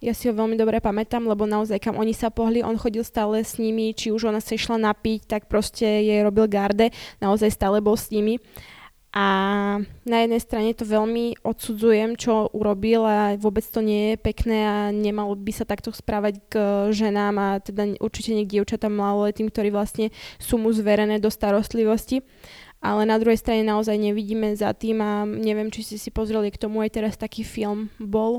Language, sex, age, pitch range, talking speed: Slovak, female, 10-29, 210-230 Hz, 190 wpm